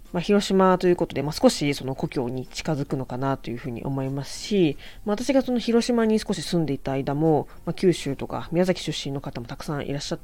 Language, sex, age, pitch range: Japanese, female, 20-39, 125-170 Hz